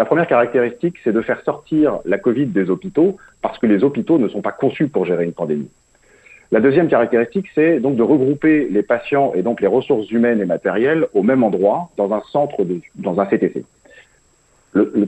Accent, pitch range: French, 105-155 Hz